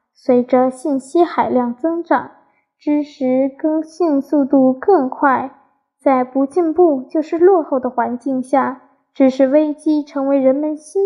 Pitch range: 255-305 Hz